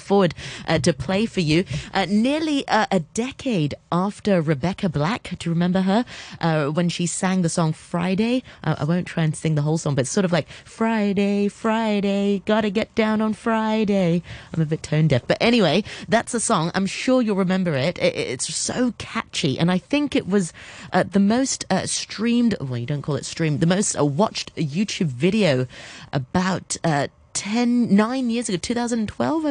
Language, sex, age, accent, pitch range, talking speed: English, female, 30-49, British, 145-200 Hz, 185 wpm